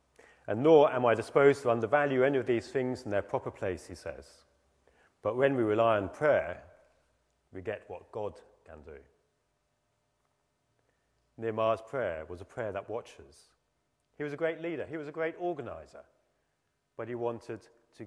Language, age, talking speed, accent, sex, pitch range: English, 40-59, 165 wpm, British, male, 115-150 Hz